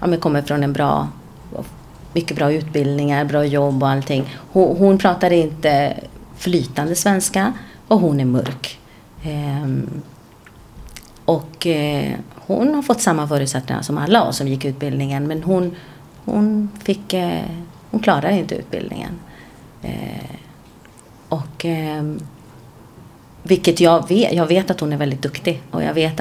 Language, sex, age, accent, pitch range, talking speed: Swedish, female, 30-49, native, 140-175 Hz, 140 wpm